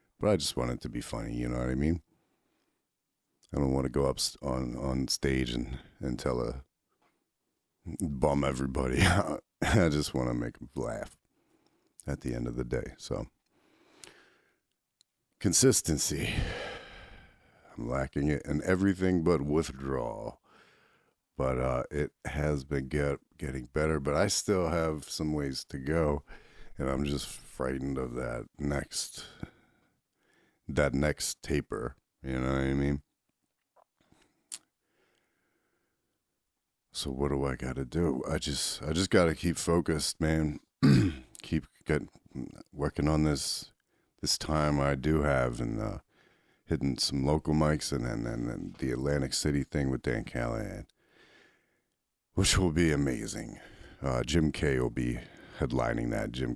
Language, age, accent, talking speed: English, 50-69, American, 145 wpm